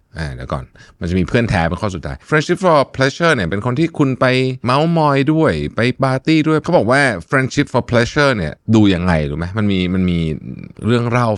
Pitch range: 85-120 Hz